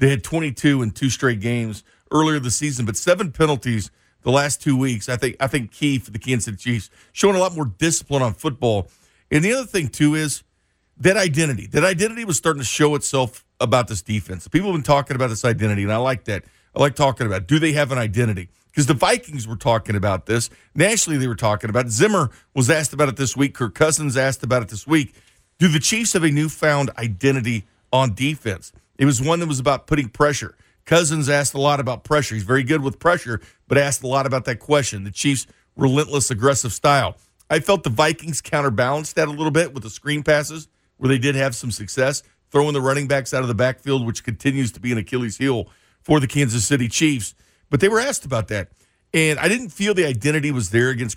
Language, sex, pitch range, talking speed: English, male, 115-150 Hz, 225 wpm